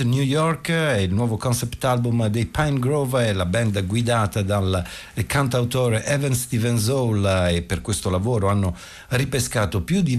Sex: male